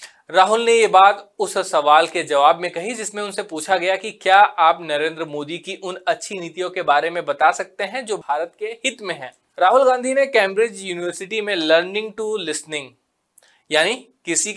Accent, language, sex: native, Hindi, male